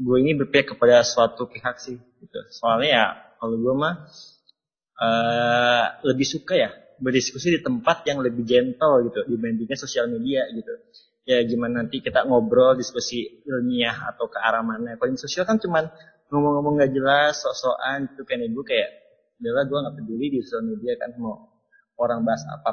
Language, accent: Indonesian, native